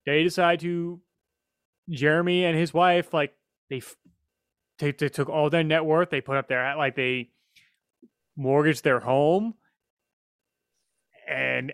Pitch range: 135-165 Hz